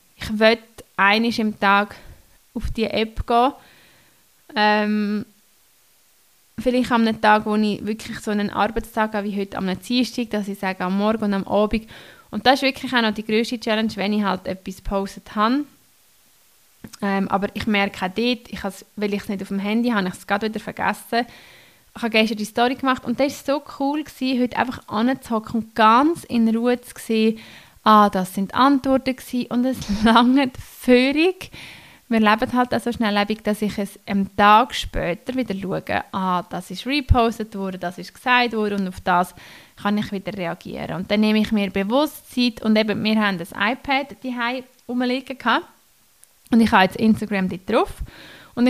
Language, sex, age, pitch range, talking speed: German, female, 20-39, 200-245 Hz, 185 wpm